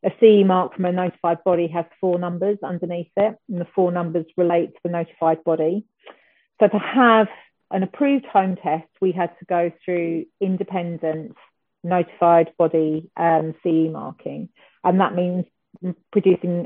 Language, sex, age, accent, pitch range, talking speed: English, female, 40-59, British, 165-190 Hz, 155 wpm